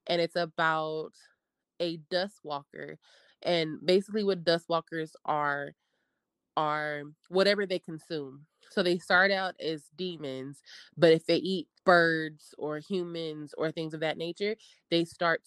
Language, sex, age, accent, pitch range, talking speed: English, female, 20-39, American, 150-180 Hz, 140 wpm